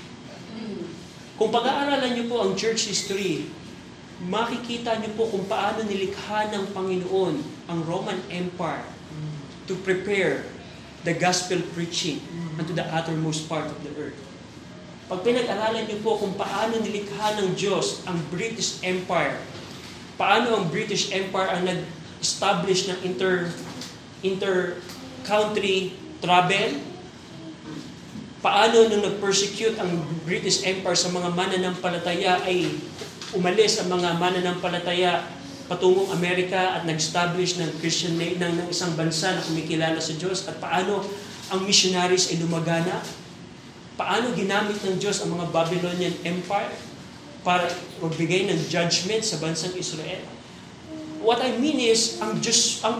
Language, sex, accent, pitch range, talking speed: Filipino, male, native, 175-210 Hz, 120 wpm